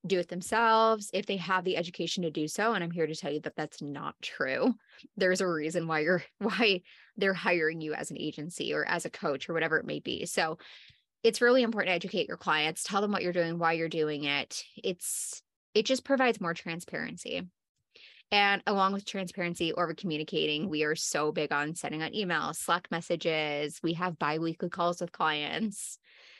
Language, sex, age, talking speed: English, female, 20-39, 200 wpm